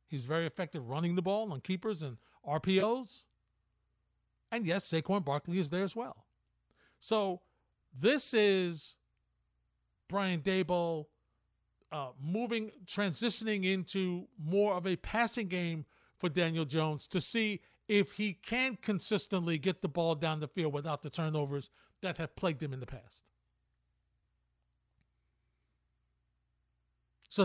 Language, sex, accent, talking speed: English, male, American, 125 wpm